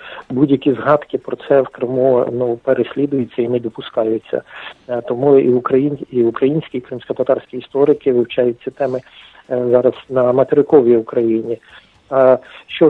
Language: English